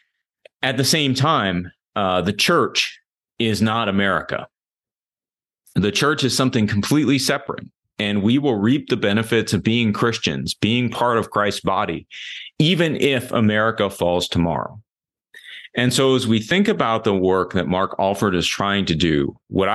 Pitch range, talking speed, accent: 95-125 Hz, 155 wpm, American